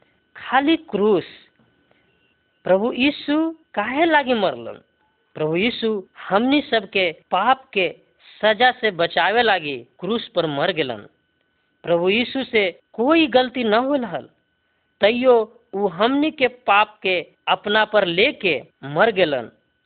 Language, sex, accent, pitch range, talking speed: Hindi, female, native, 190-265 Hz, 125 wpm